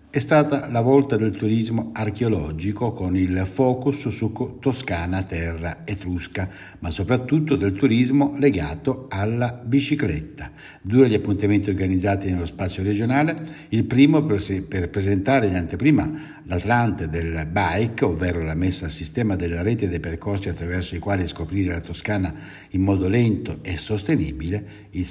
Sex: male